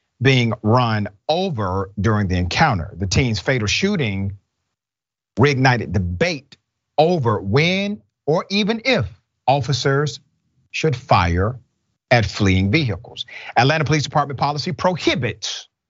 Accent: American